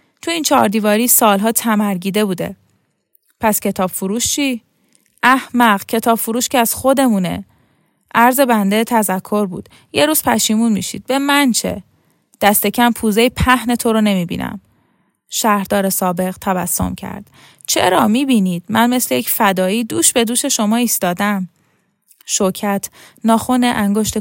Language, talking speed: Persian, 130 wpm